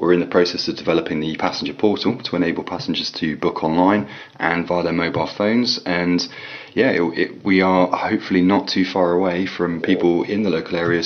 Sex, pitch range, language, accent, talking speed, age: male, 85-95 Hz, English, British, 190 wpm, 30-49